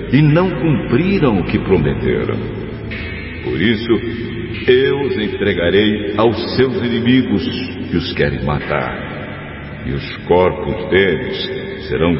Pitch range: 90-115 Hz